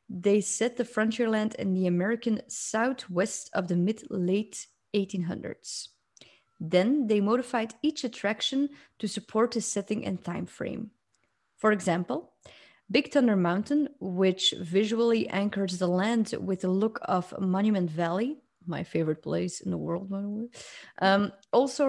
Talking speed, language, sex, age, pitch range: 135 wpm, English, female, 20-39, 185-240 Hz